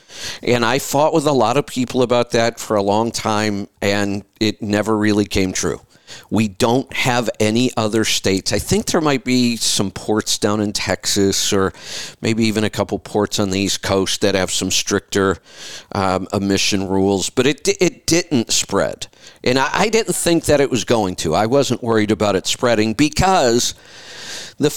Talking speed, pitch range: 185 wpm, 100-130 Hz